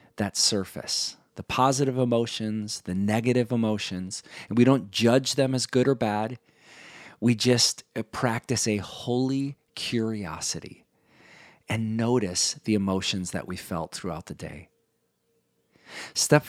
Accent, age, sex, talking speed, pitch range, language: American, 40-59, male, 125 wpm, 100-125 Hz, English